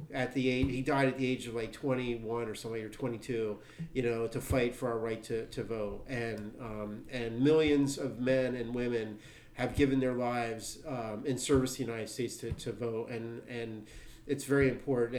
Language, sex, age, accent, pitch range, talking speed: English, male, 40-59, American, 115-135 Hz, 200 wpm